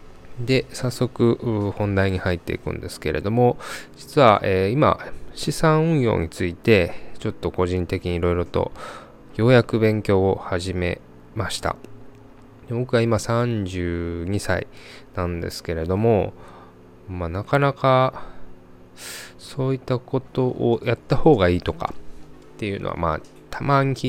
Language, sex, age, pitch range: Japanese, male, 20-39, 90-125 Hz